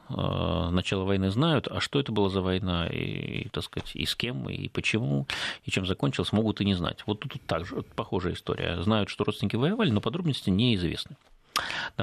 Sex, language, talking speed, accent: male, Russian, 195 wpm, native